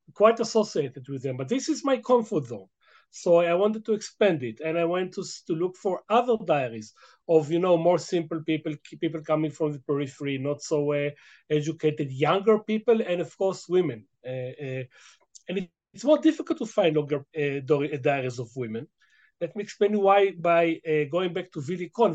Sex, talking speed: male, 190 wpm